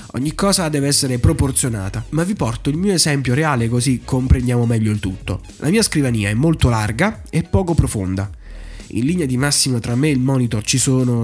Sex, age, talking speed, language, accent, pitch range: male, 20-39, 200 wpm, Italian, native, 105-145 Hz